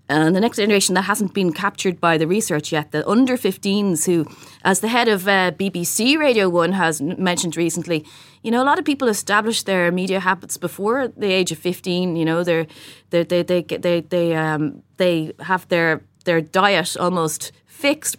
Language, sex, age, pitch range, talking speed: English, female, 30-49, 155-190 Hz, 190 wpm